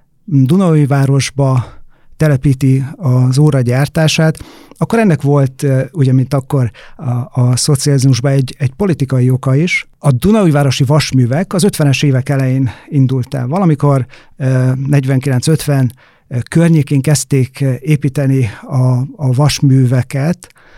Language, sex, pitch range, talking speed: Hungarian, male, 130-160 Hz, 105 wpm